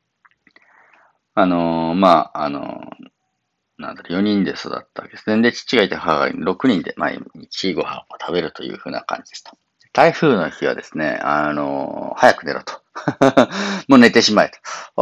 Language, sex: Japanese, male